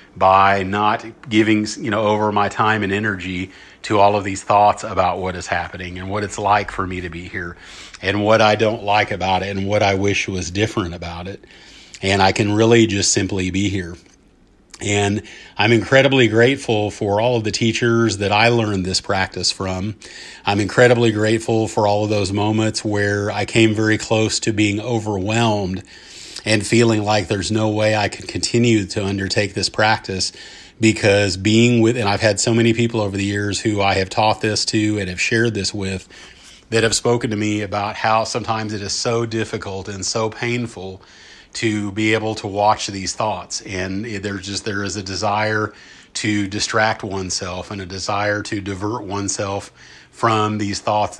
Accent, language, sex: American, English, male